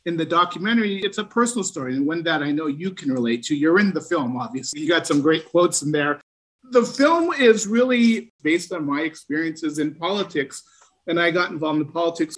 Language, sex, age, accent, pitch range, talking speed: English, male, 50-69, American, 150-180 Hz, 215 wpm